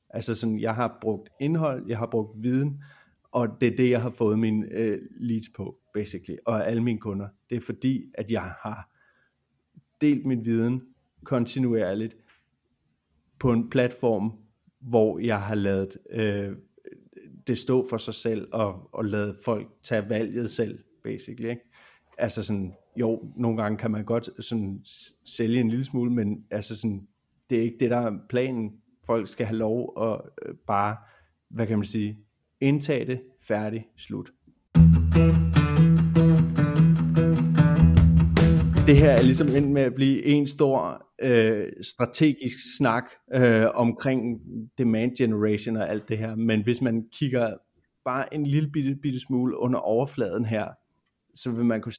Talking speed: 150 wpm